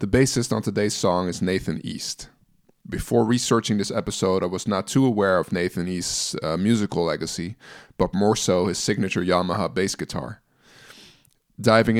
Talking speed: 160 wpm